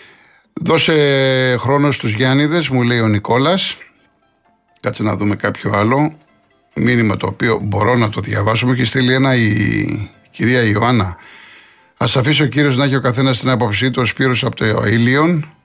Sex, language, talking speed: male, Greek, 170 wpm